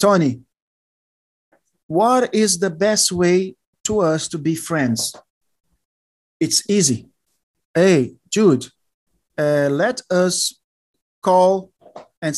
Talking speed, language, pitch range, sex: 95 wpm, English, 155-230 Hz, male